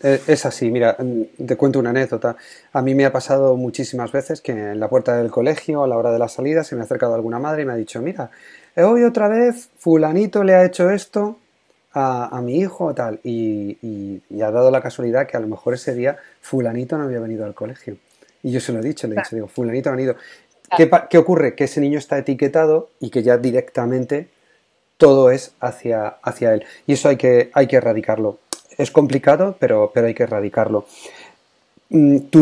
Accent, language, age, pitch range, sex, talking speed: Spanish, Spanish, 30-49, 120-155 Hz, male, 215 wpm